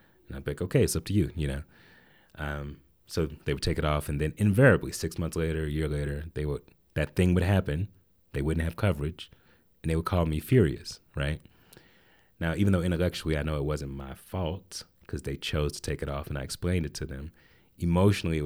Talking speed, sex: 225 wpm, male